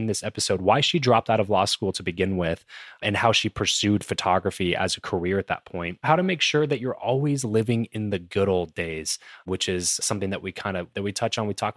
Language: English